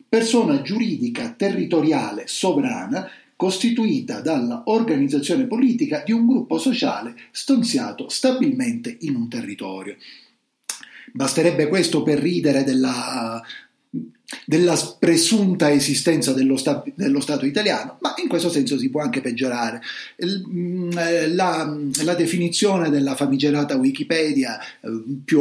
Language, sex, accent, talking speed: Italian, male, native, 100 wpm